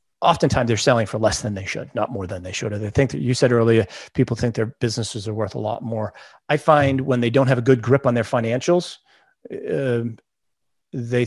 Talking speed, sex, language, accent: 225 wpm, male, English, American